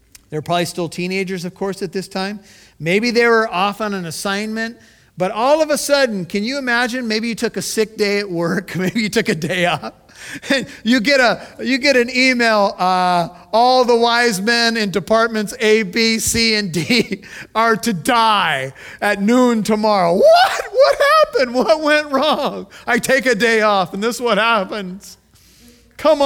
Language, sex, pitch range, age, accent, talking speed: English, male, 160-220 Hz, 40-59, American, 185 wpm